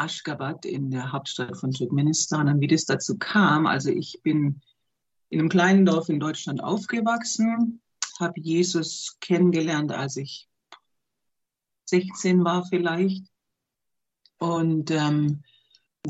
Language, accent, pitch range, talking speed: German, German, 150-185 Hz, 115 wpm